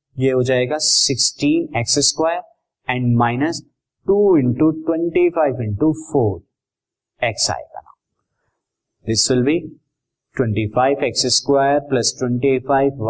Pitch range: 120-145 Hz